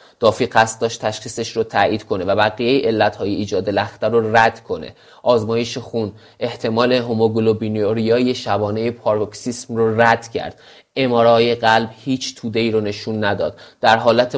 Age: 30-49